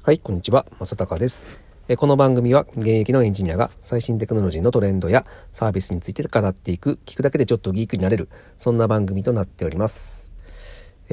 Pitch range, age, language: 95-125 Hz, 40-59, Japanese